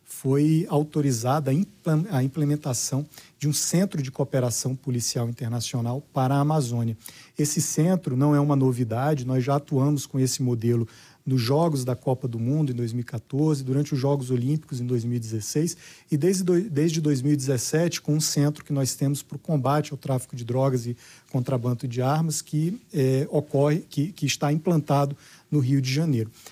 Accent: Brazilian